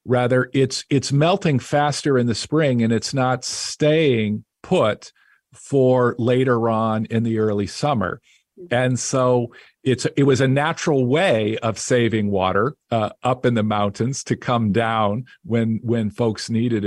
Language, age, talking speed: English, 50-69, 155 wpm